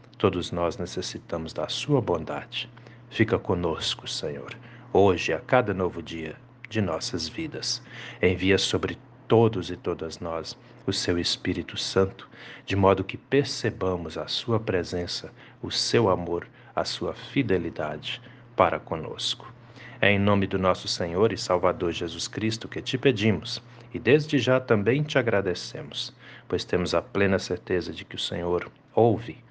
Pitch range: 90-120 Hz